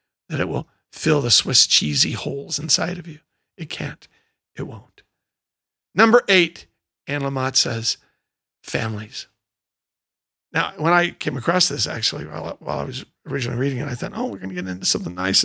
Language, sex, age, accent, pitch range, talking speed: English, male, 50-69, American, 125-175 Hz, 170 wpm